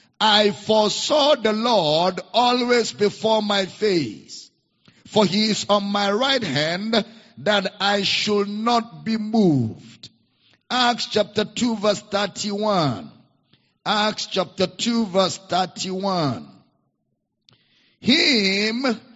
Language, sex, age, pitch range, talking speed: English, male, 50-69, 185-235 Hz, 100 wpm